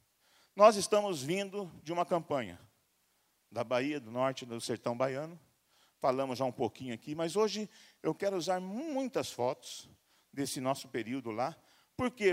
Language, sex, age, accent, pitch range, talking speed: Portuguese, male, 50-69, Brazilian, 155-220 Hz, 150 wpm